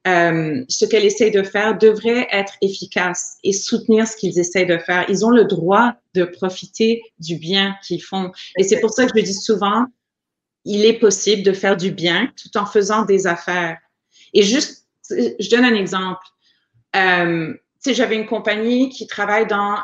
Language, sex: French, female